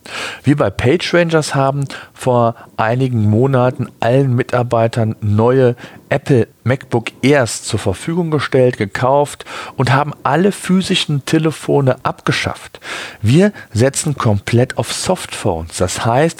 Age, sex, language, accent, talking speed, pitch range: 40-59, male, German, German, 110 wpm, 105-140 Hz